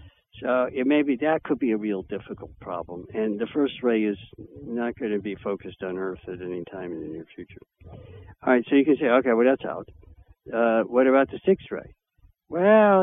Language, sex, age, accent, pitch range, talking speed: English, male, 60-79, American, 100-140 Hz, 205 wpm